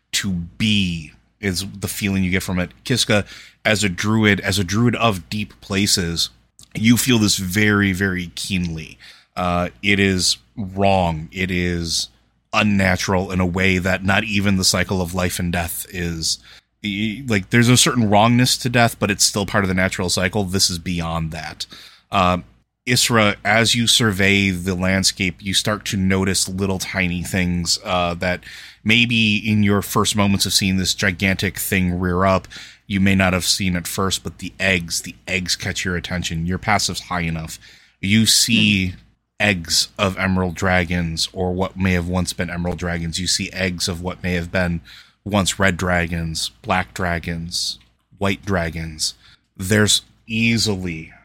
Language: English